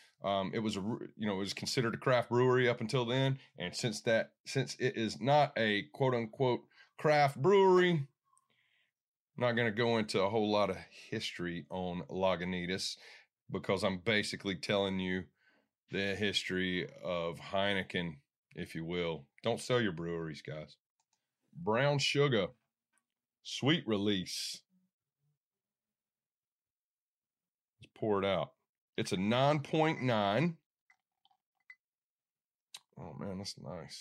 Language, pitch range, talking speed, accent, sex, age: English, 100-140 Hz, 125 wpm, American, male, 30-49